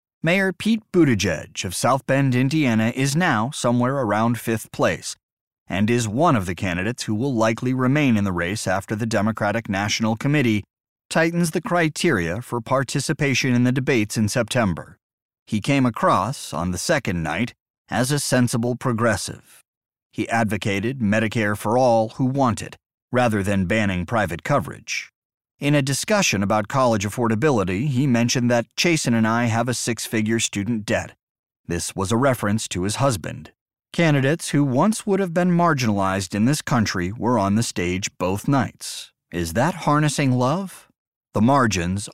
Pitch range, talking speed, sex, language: 105-140 Hz, 160 wpm, male, English